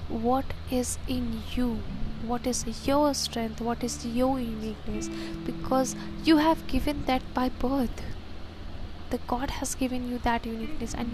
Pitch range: 200-250 Hz